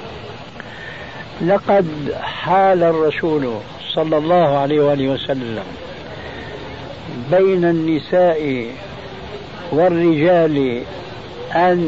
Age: 60-79